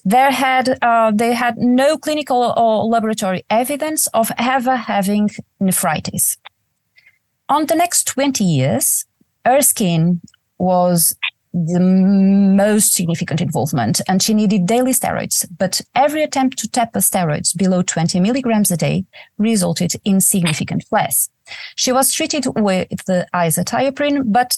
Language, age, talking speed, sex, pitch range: English, 30-49, 130 wpm, female, 185-245 Hz